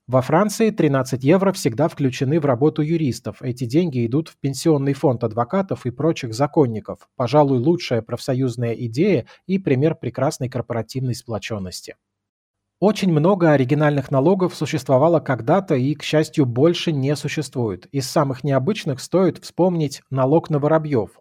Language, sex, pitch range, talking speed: Russian, male, 125-160 Hz, 135 wpm